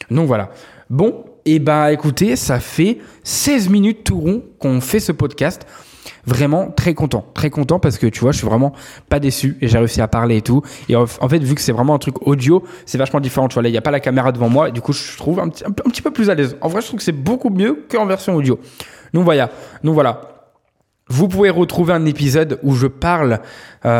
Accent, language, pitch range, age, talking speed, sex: French, French, 120-155 Hz, 20-39, 245 wpm, male